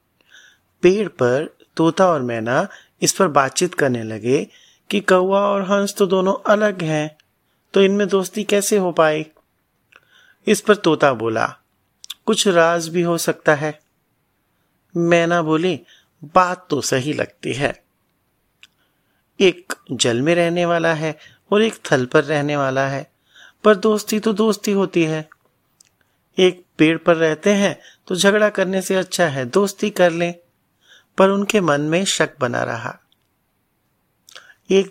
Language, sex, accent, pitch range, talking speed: Hindi, male, native, 135-195 Hz, 140 wpm